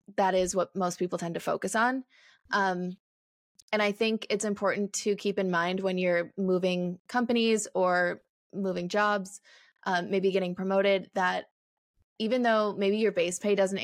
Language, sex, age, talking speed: English, female, 20-39, 165 wpm